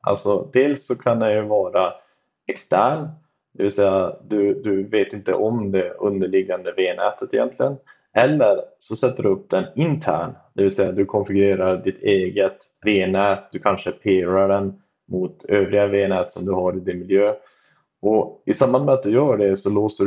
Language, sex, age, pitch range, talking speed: Swedish, male, 20-39, 95-125 Hz, 175 wpm